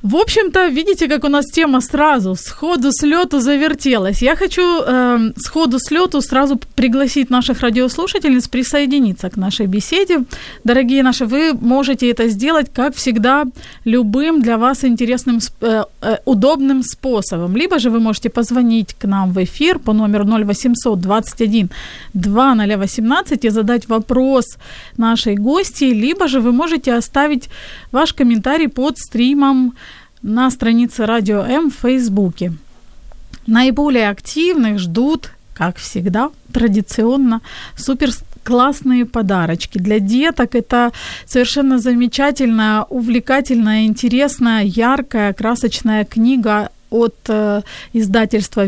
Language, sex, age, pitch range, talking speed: Ukrainian, female, 30-49, 220-275 Hz, 110 wpm